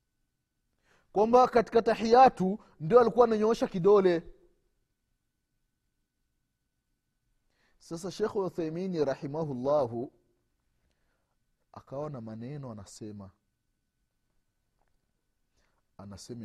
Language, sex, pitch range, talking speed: Swahili, male, 140-200 Hz, 55 wpm